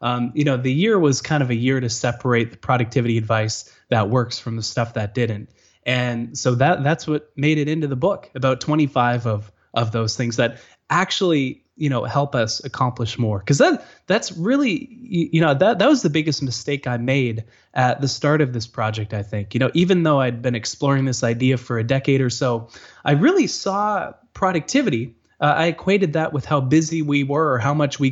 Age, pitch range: 20-39, 120-155 Hz